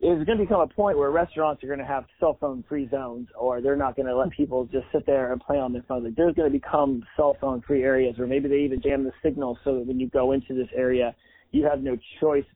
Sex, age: male, 30-49